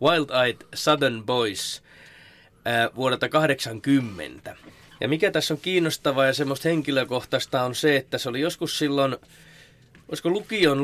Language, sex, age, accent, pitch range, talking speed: Finnish, male, 20-39, native, 120-155 Hz, 125 wpm